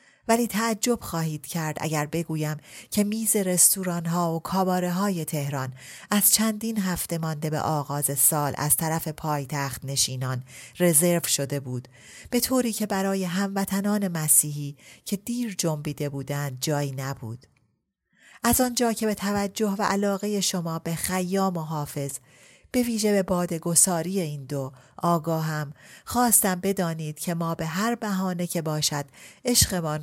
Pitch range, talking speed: 145-195 Hz, 135 wpm